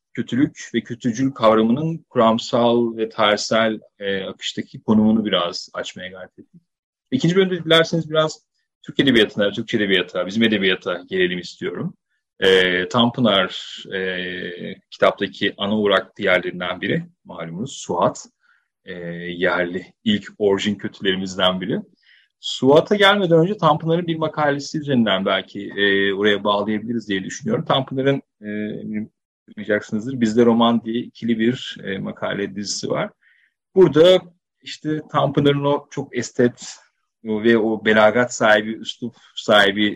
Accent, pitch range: native, 100-140 Hz